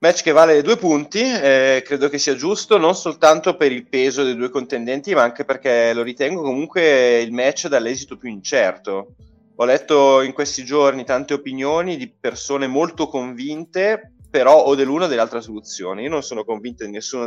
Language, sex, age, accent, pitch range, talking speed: Italian, male, 30-49, native, 110-140 Hz, 180 wpm